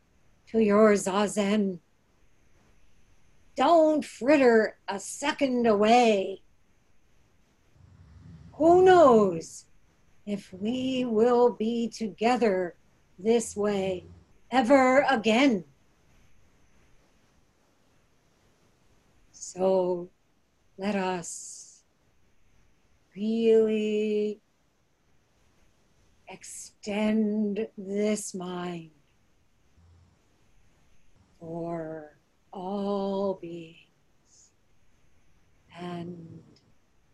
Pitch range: 140-210 Hz